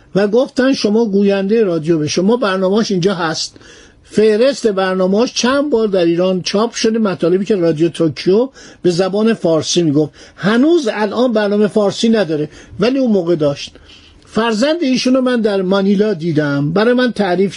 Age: 50-69